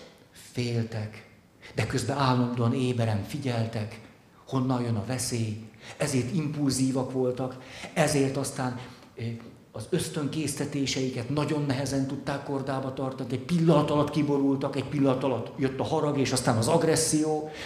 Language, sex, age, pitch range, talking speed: Hungarian, male, 50-69, 125-150 Hz, 120 wpm